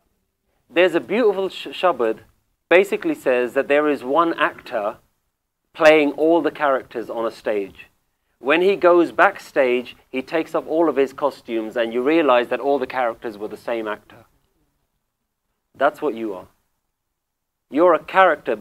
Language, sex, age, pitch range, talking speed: English, male, 40-59, 110-160 Hz, 155 wpm